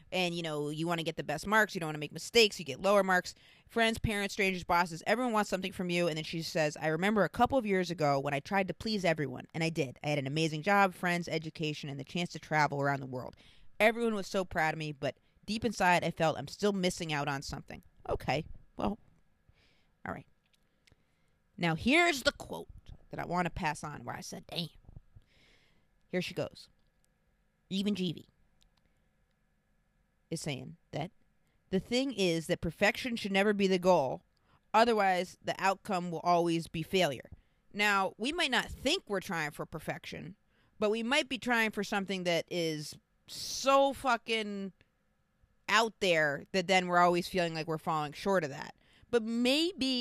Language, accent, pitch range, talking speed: English, American, 160-205 Hz, 190 wpm